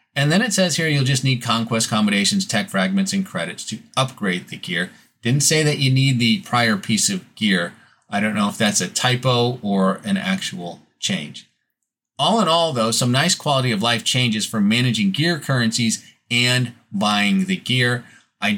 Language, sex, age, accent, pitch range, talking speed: English, male, 30-49, American, 110-155 Hz, 185 wpm